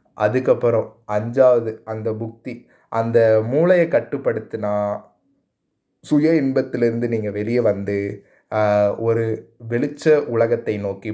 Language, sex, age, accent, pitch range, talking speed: Tamil, male, 20-39, native, 110-145 Hz, 85 wpm